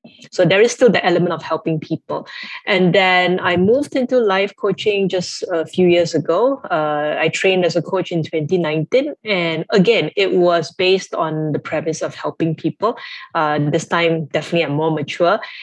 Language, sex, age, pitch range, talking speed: English, female, 20-39, 155-185 Hz, 180 wpm